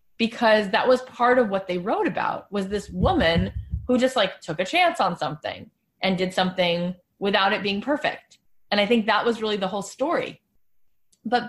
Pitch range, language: 205-260 Hz, English